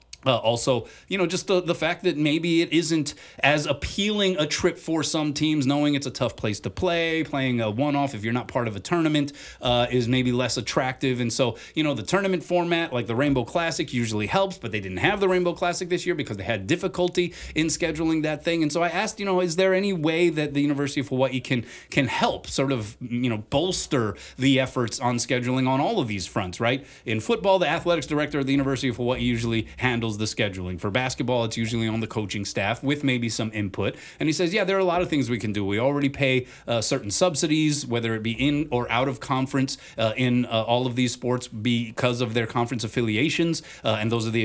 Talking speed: 230 wpm